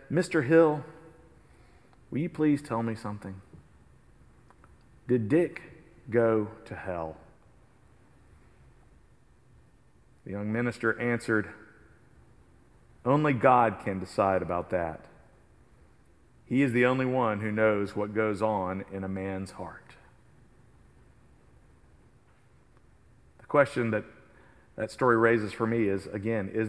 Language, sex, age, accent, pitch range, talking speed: English, male, 40-59, American, 110-150 Hz, 110 wpm